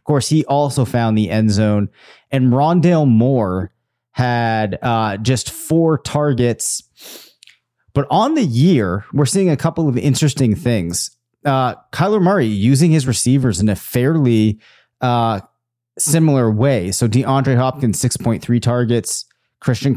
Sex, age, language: male, 30-49, English